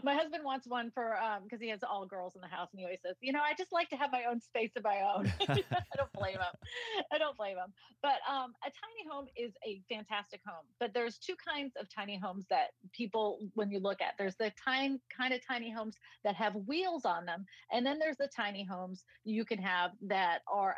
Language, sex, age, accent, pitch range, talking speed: English, female, 30-49, American, 185-245 Hz, 245 wpm